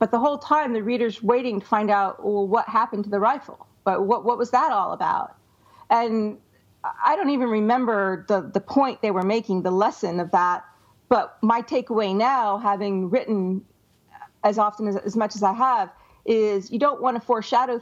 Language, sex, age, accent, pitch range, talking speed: English, female, 40-59, American, 200-265 Hz, 195 wpm